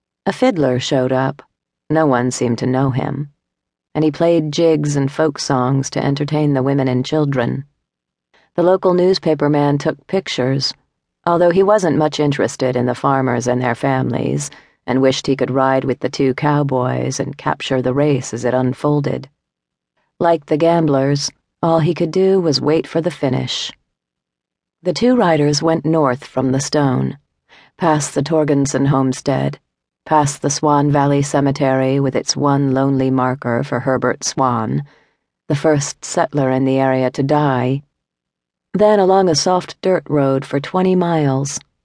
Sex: female